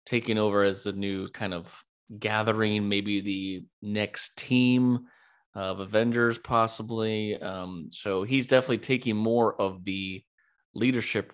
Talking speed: 125 wpm